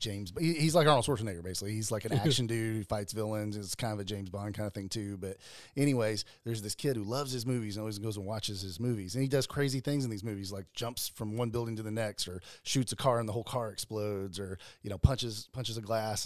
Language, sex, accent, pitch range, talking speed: English, male, American, 105-130 Hz, 265 wpm